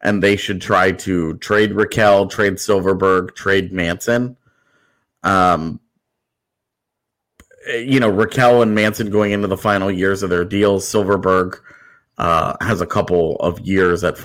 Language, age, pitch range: English, 30-49, 95-115 Hz